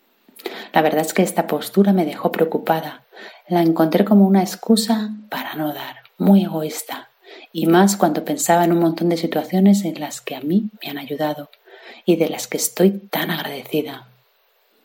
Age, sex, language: 40-59, female, Spanish